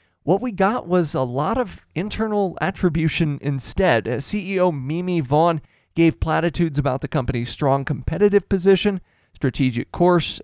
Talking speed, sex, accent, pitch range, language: 130 wpm, male, American, 130-170 Hz, English